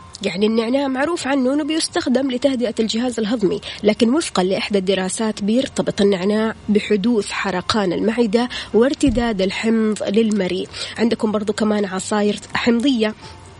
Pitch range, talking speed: 205-255 Hz, 115 wpm